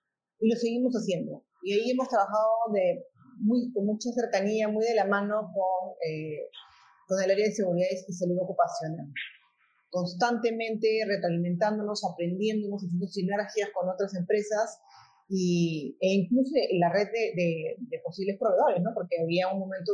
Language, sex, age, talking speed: Spanish, female, 30-49, 155 wpm